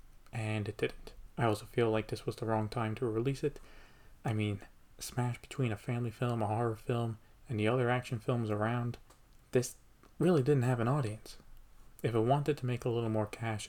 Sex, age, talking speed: male, 30-49, 205 wpm